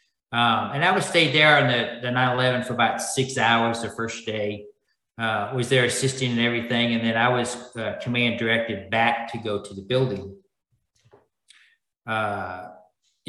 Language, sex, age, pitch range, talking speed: English, male, 40-59, 115-130 Hz, 165 wpm